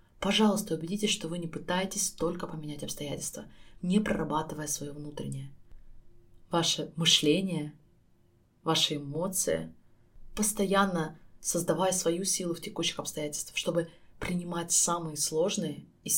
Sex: female